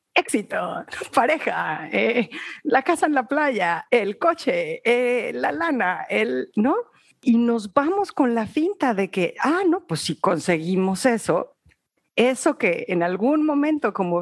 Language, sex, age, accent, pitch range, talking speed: Spanish, female, 50-69, Mexican, 160-260 Hz, 150 wpm